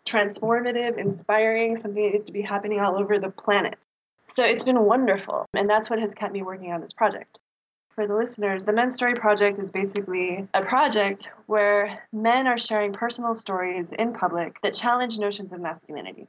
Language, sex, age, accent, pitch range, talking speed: English, female, 20-39, American, 190-220 Hz, 180 wpm